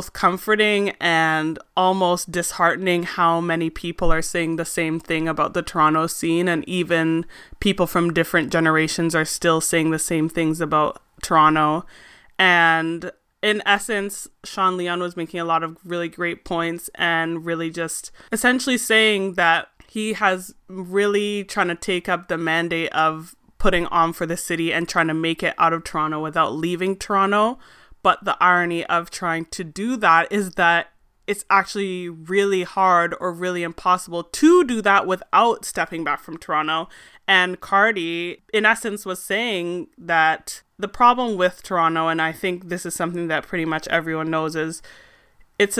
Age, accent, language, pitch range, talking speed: 20-39, American, English, 165-195 Hz, 160 wpm